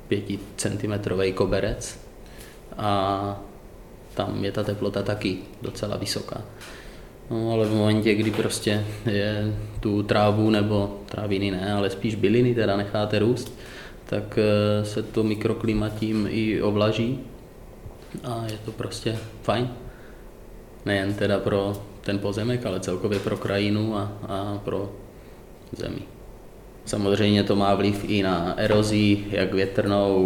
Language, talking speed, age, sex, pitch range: Czech, 125 wpm, 20-39, male, 95-105 Hz